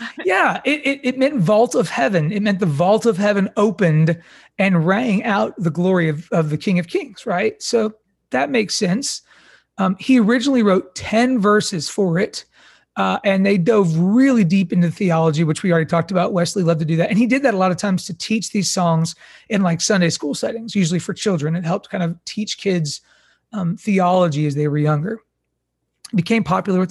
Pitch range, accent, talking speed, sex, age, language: 170-215 Hz, American, 205 wpm, male, 30-49, English